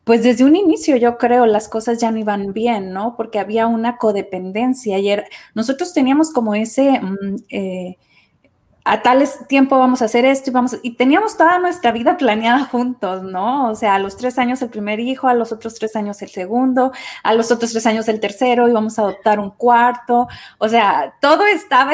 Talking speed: 200 wpm